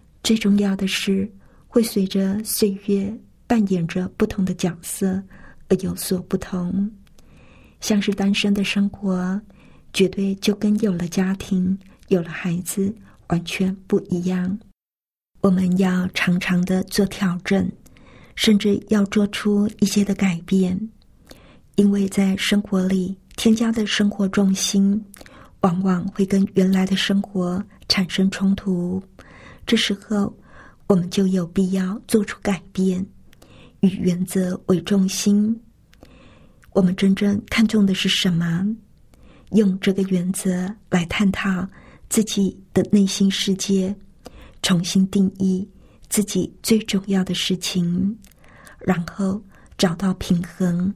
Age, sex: 50-69, female